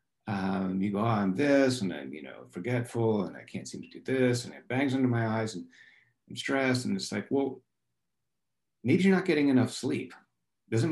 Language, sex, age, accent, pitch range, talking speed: English, male, 50-69, American, 95-125 Hz, 210 wpm